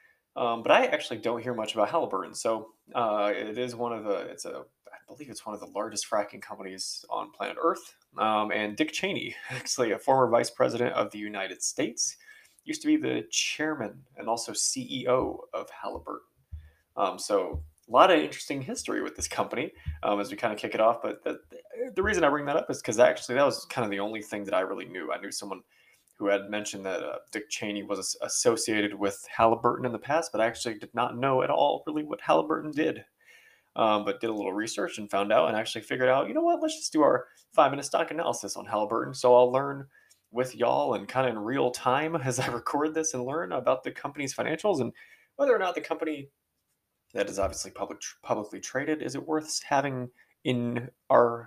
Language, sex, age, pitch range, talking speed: English, male, 20-39, 105-155 Hz, 215 wpm